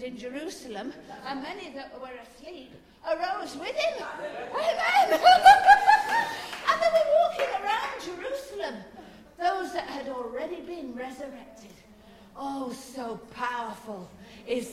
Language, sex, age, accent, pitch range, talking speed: English, female, 50-69, British, 240-315 Hz, 110 wpm